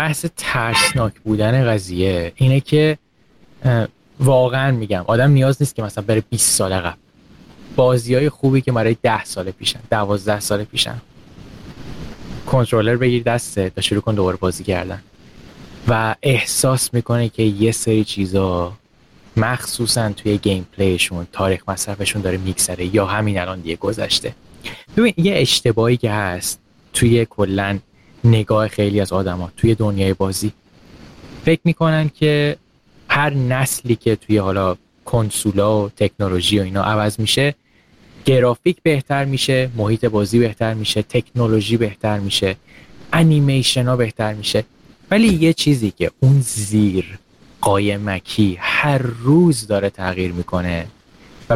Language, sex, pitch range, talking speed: Persian, male, 100-125 Hz, 130 wpm